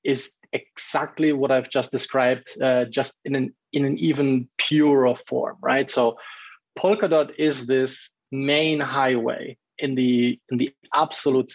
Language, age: English, 20-39